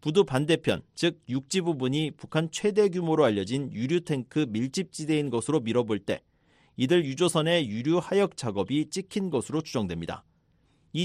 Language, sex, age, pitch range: Korean, male, 40-59, 125-175 Hz